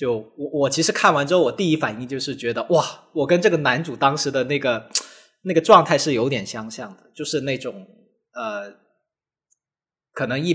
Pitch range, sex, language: 125-160 Hz, male, Chinese